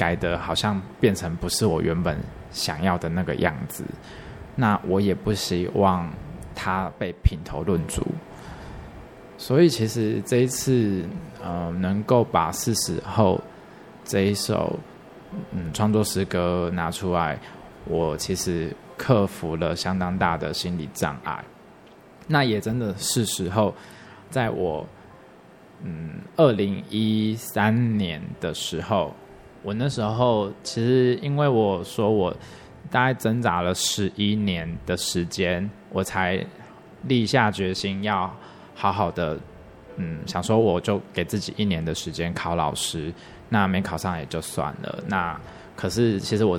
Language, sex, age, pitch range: Chinese, male, 20-39, 90-110 Hz